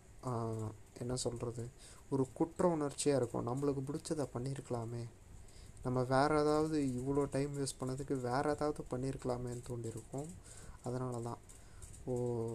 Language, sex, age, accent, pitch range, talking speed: Tamil, male, 30-49, native, 115-145 Hz, 110 wpm